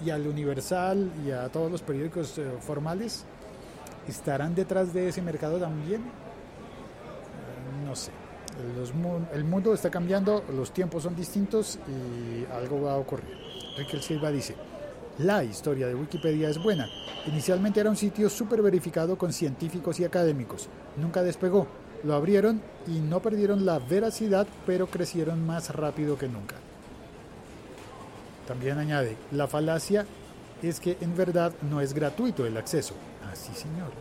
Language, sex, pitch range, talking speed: Spanish, male, 145-185 Hz, 140 wpm